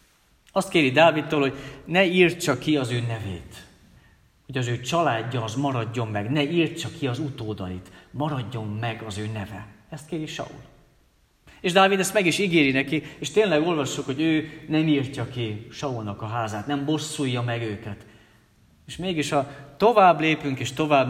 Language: Hungarian